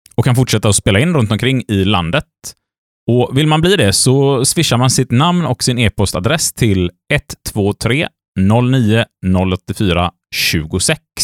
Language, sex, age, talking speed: Swedish, male, 30-49, 140 wpm